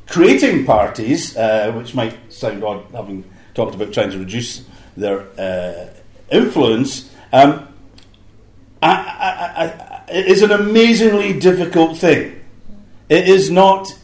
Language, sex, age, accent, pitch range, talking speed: English, male, 50-69, British, 120-185 Hz, 120 wpm